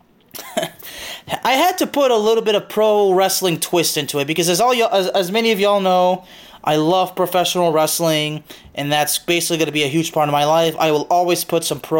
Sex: male